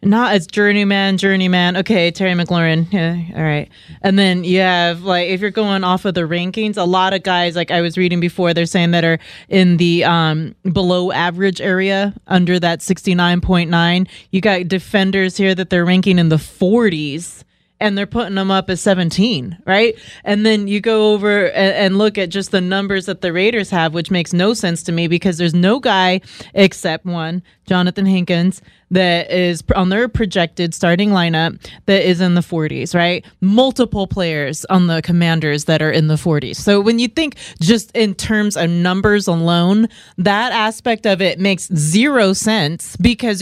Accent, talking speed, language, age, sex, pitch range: American, 180 wpm, English, 30-49, female, 175-205 Hz